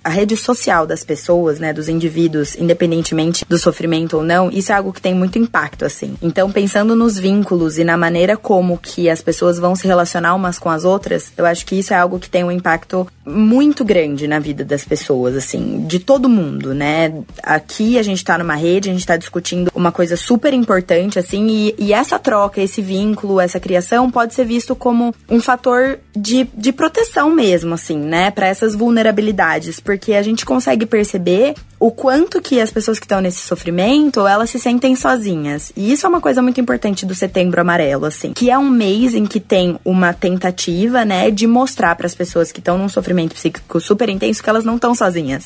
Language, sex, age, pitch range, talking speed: Portuguese, female, 20-39, 170-220 Hz, 205 wpm